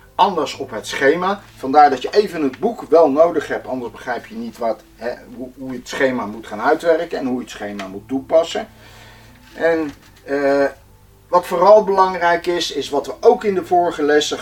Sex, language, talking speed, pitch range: male, English, 185 wpm, 125-175 Hz